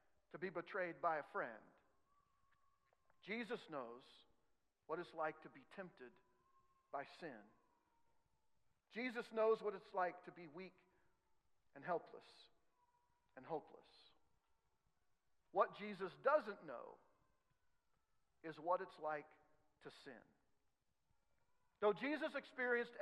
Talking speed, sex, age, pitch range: 105 wpm, male, 50-69, 200-270 Hz